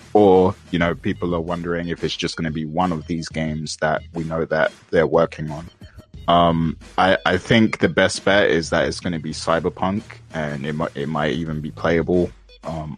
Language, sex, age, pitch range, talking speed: English, male, 20-39, 80-90 Hz, 210 wpm